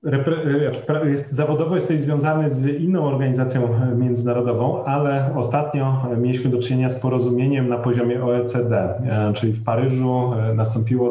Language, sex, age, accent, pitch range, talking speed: Polish, male, 30-49, native, 110-125 Hz, 125 wpm